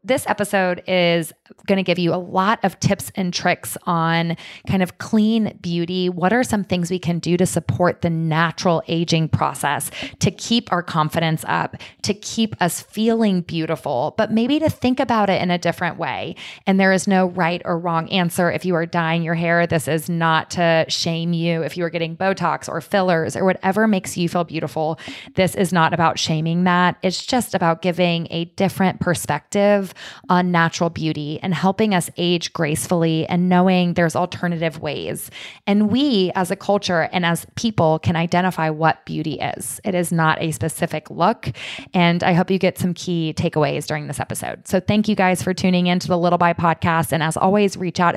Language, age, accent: English, 20-39, American